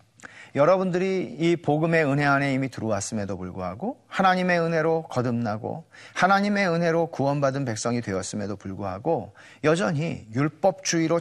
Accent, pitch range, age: native, 120-190 Hz, 40-59